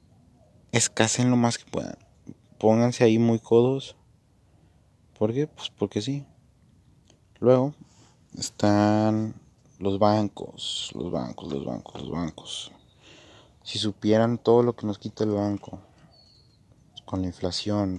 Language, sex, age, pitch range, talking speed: Spanish, male, 30-49, 95-115 Hz, 120 wpm